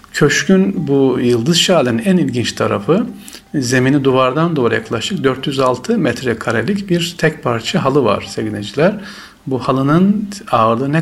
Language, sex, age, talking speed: Turkish, male, 50-69, 125 wpm